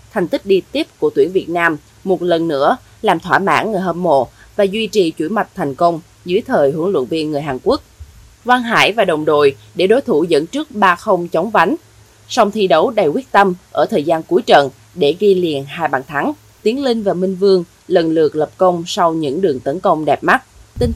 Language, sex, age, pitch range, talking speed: Vietnamese, female, 20-39, 150-220 Hz, 225 wpm